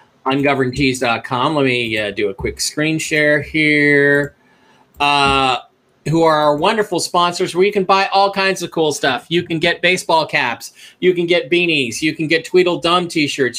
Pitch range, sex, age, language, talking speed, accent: 150-195 Hz, male, 40-59, English, 170 wpm, American